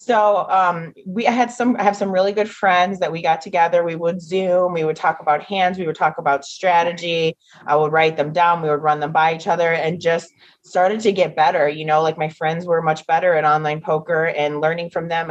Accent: American